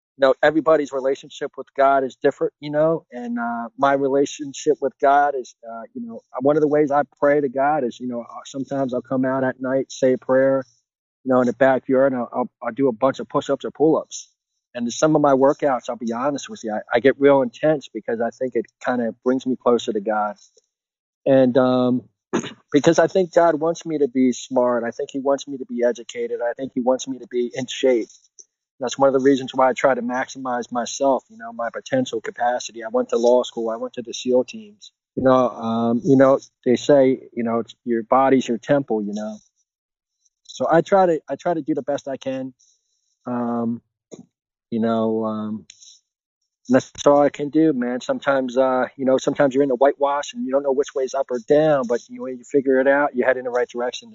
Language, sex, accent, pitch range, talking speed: English, male, American, 120-145 Hz, 225 wpm